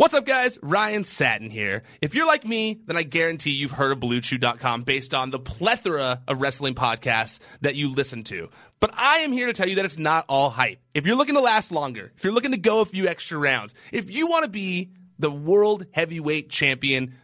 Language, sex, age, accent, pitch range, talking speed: English, male, 30-49, American, 140-205 Hz, 225 wpm